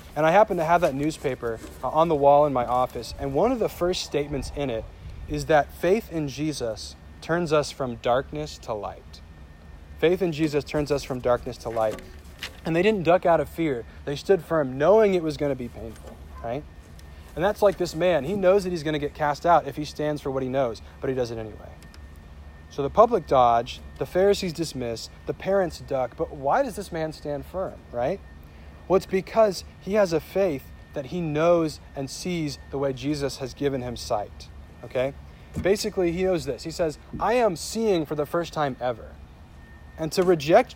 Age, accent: 40-59, American